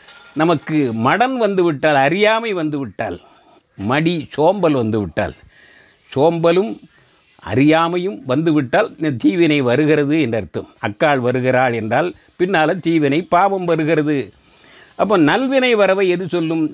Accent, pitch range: native, 135-195 Hz